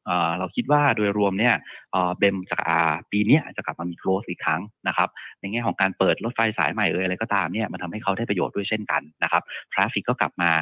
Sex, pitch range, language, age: male, 90-110 Hz, Thai, 30-49